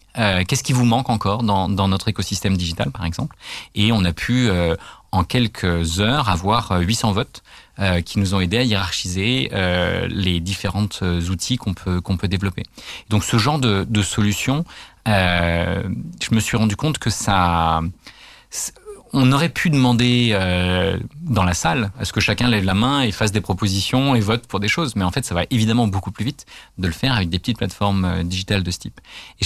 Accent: French